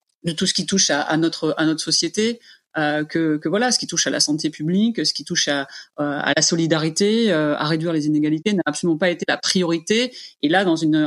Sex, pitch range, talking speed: female, 160-195 Hz, 220 wpm